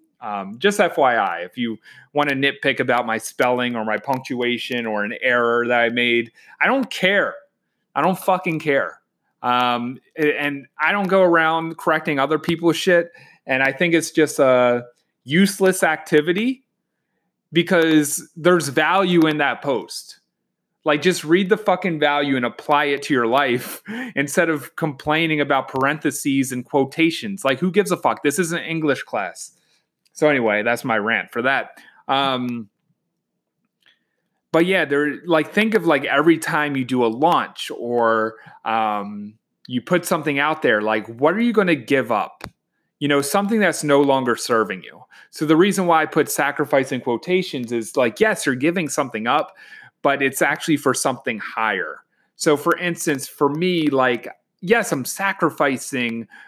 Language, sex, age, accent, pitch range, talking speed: English, male, 30-49, American, 130-175 Hz, 165 wpm